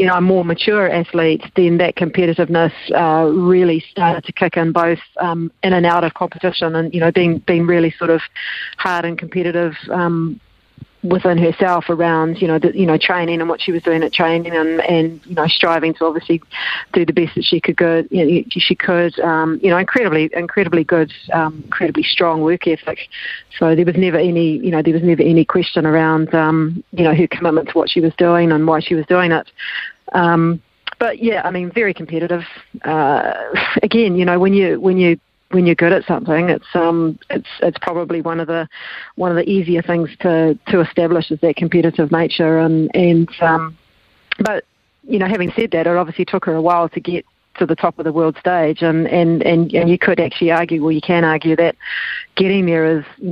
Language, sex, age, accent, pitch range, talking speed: English, female, 40-59, Australian, 165-180 Hz, 215 wpm